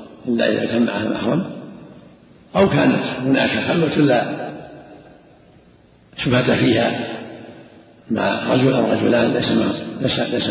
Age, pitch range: 50-69, 125-150 Hz